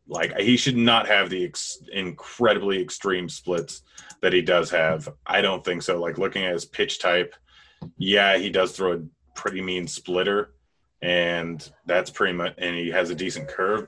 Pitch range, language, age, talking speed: 85-100 Hz, English, 30-49, 175 wpm